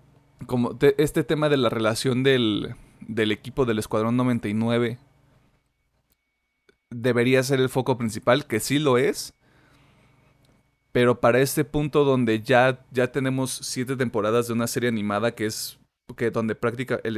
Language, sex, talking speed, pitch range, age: Spanish, male, 135 wpm, 115-135 Hz, 30-49